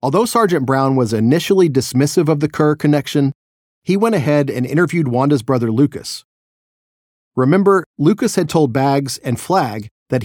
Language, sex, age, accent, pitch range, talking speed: English, male, 40-59, American, 120-155 Hz, 150 wpm